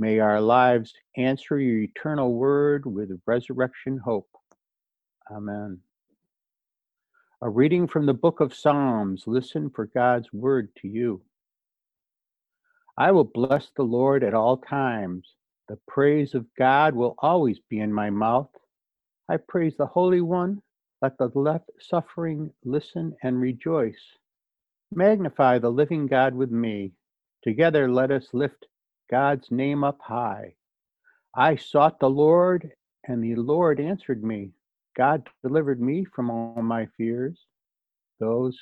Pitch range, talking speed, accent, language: 120-150 Hz, 130 wpm, American, English